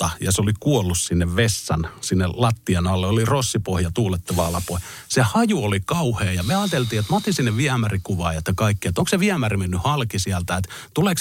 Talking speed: 195 wpm